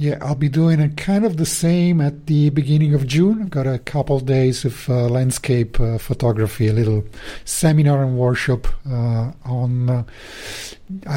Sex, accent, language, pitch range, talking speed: male, Italian, English, 120-150 Hz, 175 wpm